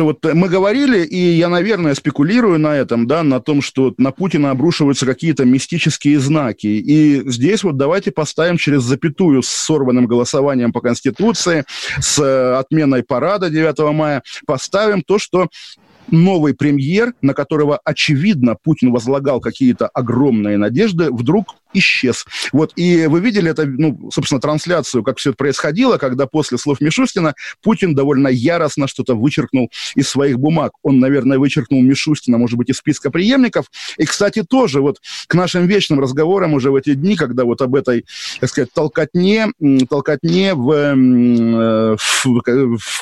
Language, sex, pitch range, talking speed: Russian, male, 135-170 Hz, 145 wpm